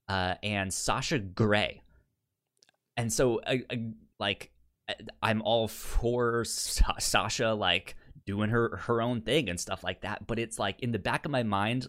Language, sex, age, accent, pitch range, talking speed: English, male, 20-39, American, 100-135 Hz, 145 wpm